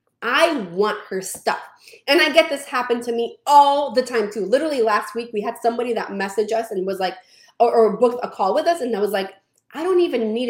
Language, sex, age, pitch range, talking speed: English, female, 30-49, 220-310 Hz, 240 wpm